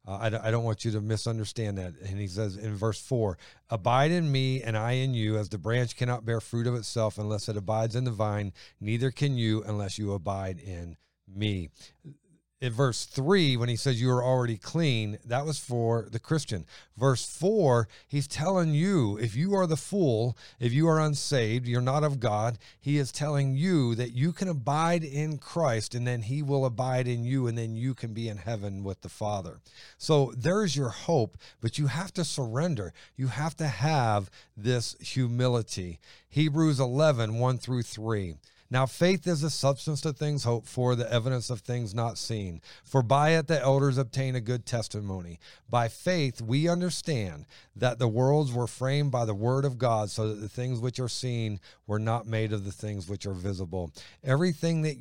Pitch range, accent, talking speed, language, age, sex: 110-145 Hz, American, 195 wpm, English, 40-59, male